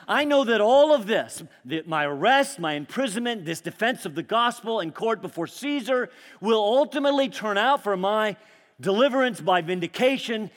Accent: American